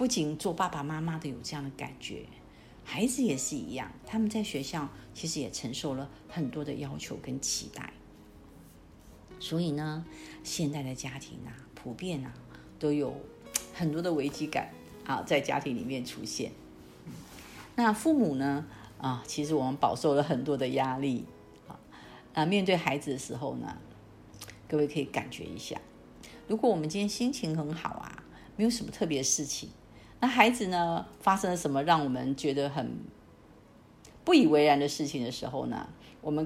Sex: female